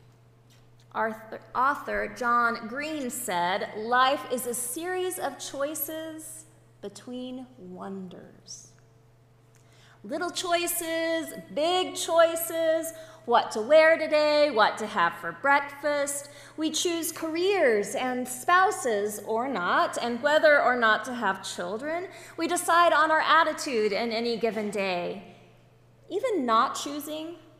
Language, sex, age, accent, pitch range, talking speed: English, female, 30-49, American, 195-315 Hz, 115 wpm